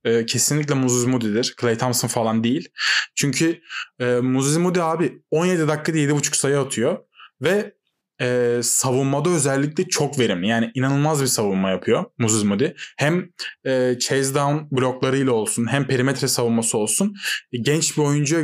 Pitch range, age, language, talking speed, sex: 125-165 Hz, 20-39, Turkish, 130 wpm, male